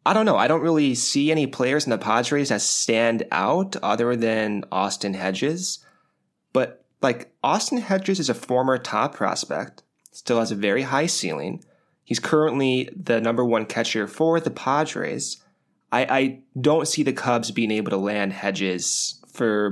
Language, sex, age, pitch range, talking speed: English, male, 20-39, 105-140 Hz, 165 wpm